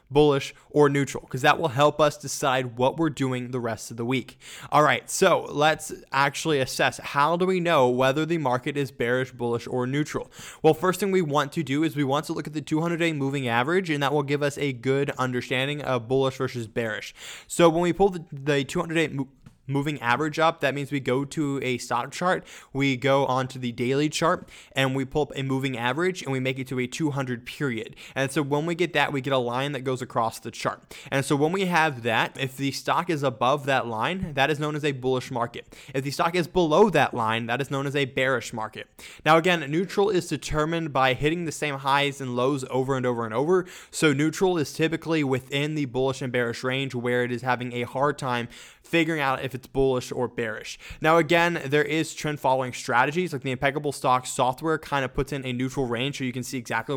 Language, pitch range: English, 125-155 Hz